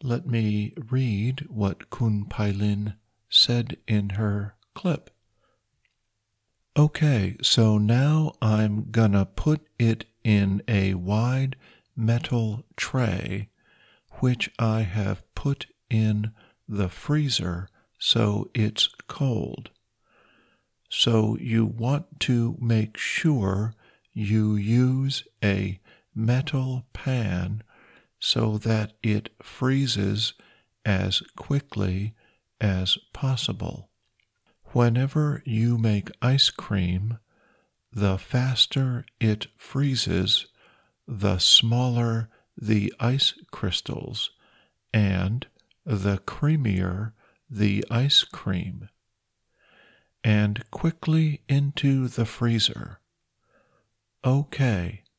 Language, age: Thai, 50-69